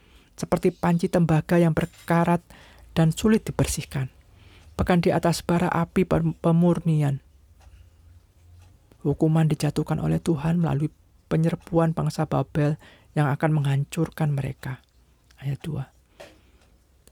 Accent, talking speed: native, 95 wpm